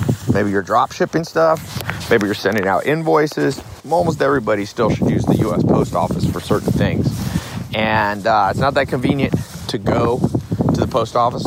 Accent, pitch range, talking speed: American, 100-145 Hz, 180 wpm